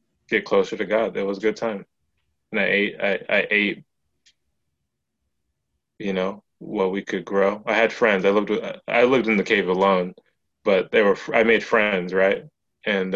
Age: 20-39